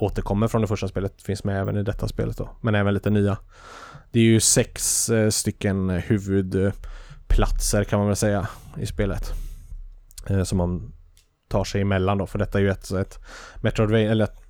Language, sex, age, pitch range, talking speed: Swedish, male, 20-39, 95-105 Hz, 180 wpm